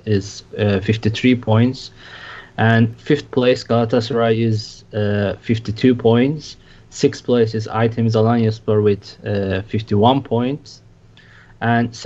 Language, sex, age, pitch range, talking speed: English, male, 20-39, 105-120 Hz, 110 wpm